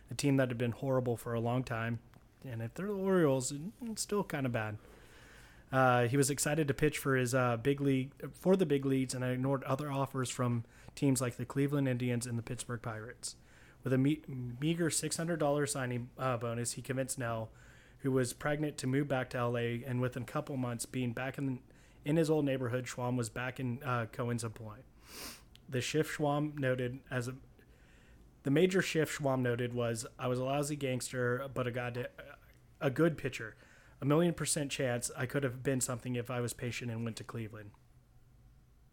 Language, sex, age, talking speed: English, male, 30-49, 200 wpm